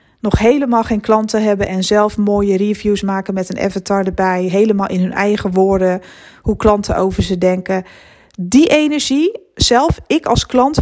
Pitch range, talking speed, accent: 200-245 Hz, 165 wpm, Dutch